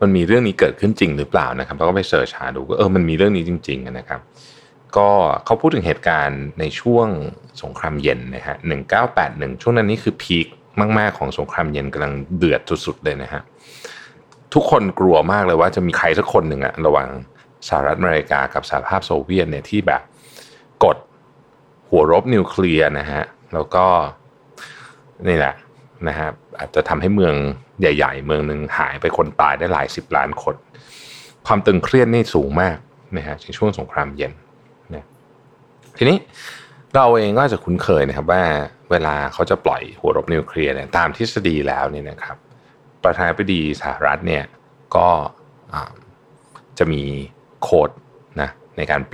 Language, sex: Thai, male